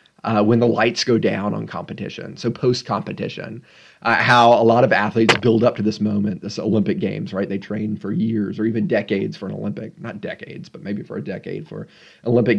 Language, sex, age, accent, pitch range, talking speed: English, male, 30-49, American, 105-120 Hz, 205 wpm